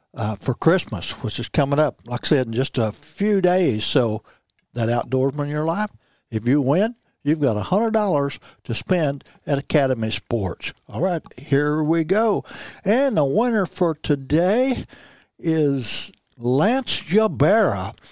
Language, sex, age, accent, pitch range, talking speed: English, male, 60-79, American, 130-190 Hz, 155 wpm